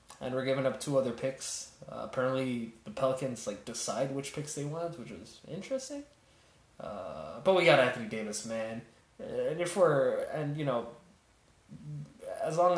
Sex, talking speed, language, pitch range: male, 165 wpm, English, 120-145 Hz